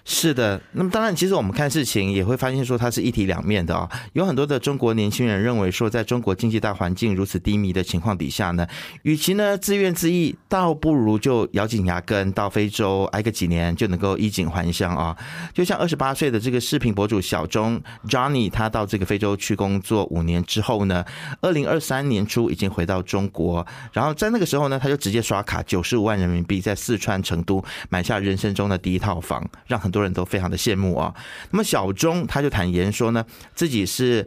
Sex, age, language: male, 30-49, Chinese